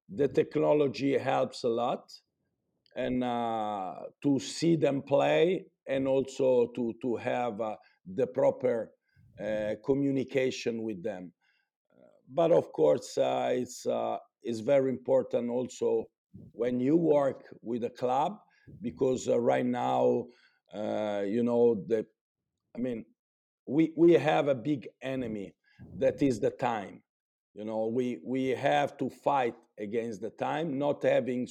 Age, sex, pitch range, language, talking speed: 50-69, male, 120-155 Hz, Turkish, 135 wpm